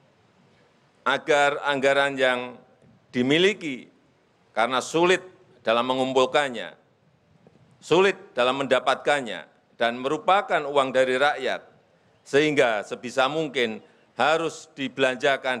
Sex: male